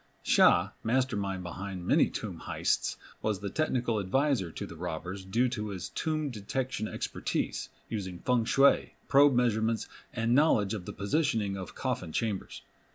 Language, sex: English, male